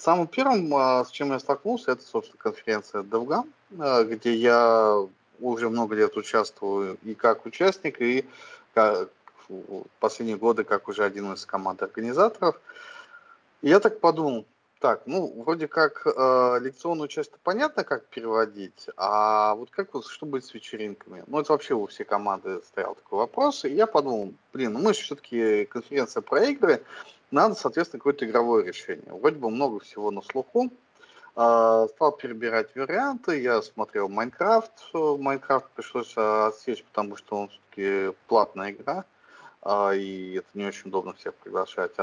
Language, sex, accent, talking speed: Russian, male, native, 150 wpm